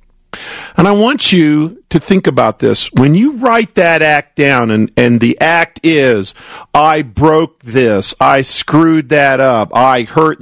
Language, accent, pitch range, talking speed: English, American, 120-160 Hz, 160 wpm